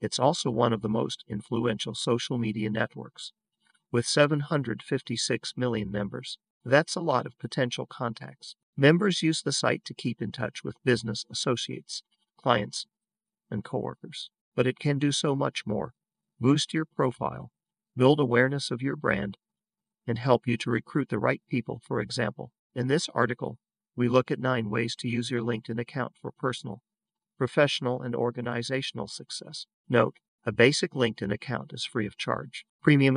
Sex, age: male, 40-59